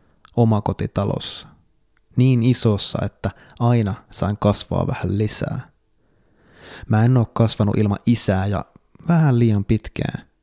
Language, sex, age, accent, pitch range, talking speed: Finnish, male, 20-39, native, 105-120 Hz, 115 wpm